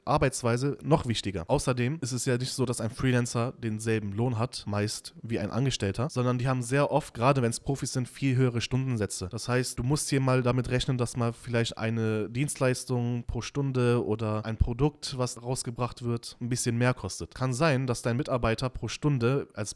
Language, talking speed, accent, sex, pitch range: German, 195 wpm, German, male, 115-140 Hz